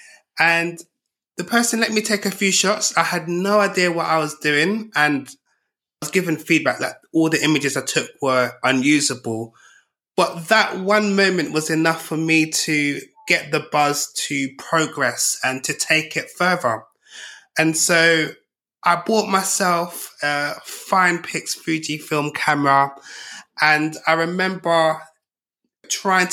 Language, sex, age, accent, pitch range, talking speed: English, male, 20-39, British, 150-180 Hz, 145 wpm